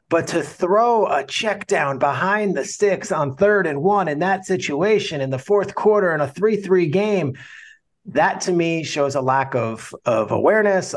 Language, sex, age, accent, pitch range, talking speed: English, male, 30-49, American, 135-170 Hz, 180 wpm